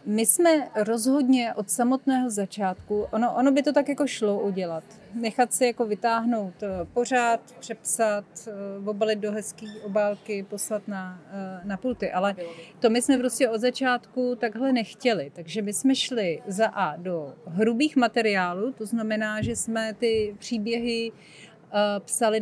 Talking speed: 140 wpm